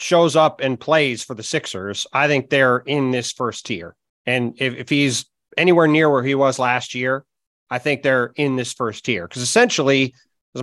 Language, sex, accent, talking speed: English, male, American, 200 wpm